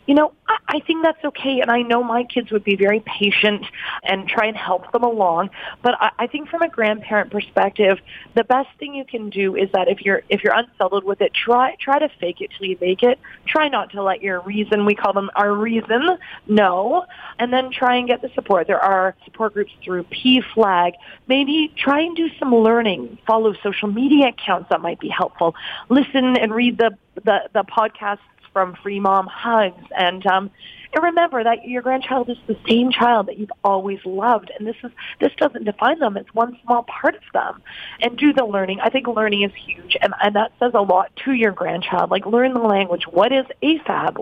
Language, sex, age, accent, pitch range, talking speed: English, female, 30-49, American, 195-250 Hz, 210 wpm